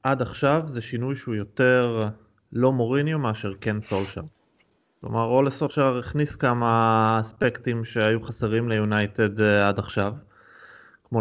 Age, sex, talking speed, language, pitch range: 20-39, male, 120 wpm, Hebrew, 110-140 Hz